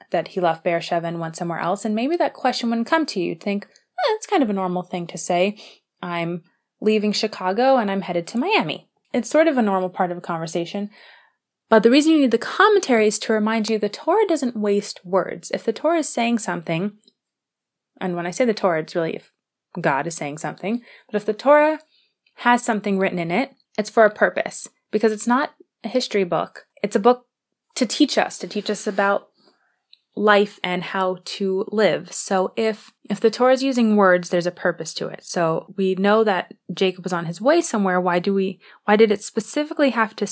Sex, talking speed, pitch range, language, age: female, 215 wpm, 185-235 Hz, English, 20-39